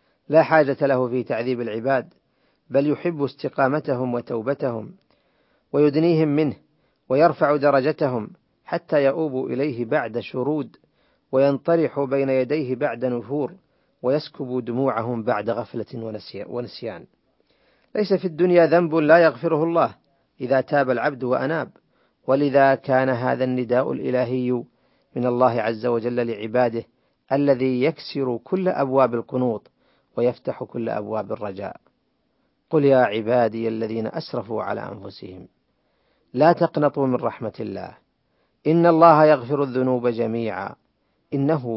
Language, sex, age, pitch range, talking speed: Arabic, male, 40-59, 120-150 Hz, 110 wpm